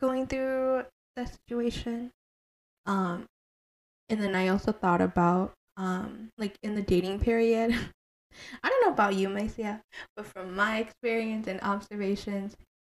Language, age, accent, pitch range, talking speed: English, 10-29, American, 175-210 Hz, 135 wpm